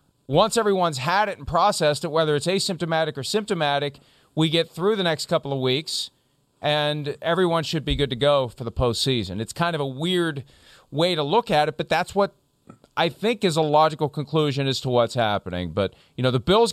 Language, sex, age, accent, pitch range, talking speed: English, male, 40-59, American, 130-170 Hz, 210 wpm